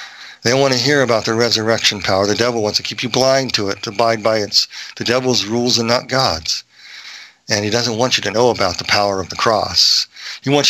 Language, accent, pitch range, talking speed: English, American, 115-145 Hz, 235 wpm